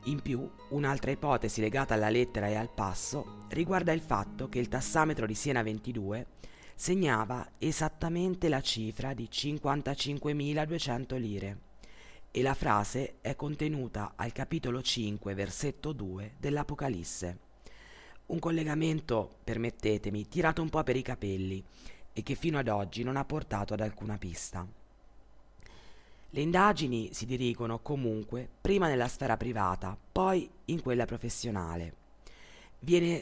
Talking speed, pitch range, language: 130 wpm, 105-145 Hz, Italian